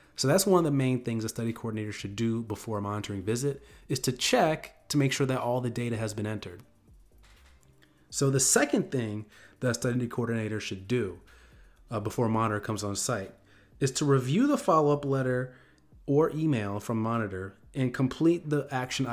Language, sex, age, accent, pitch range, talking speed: English, male, 30-49, American, 110-130 Hz, 190 wpm